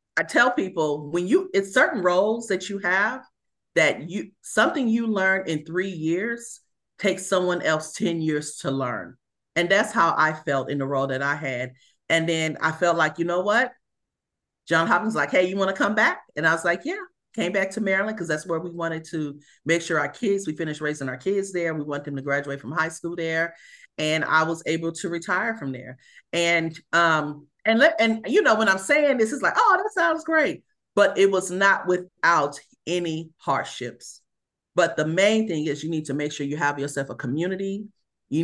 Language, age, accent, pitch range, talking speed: English, 40-59, American, 140-185 Hz, 210 wpm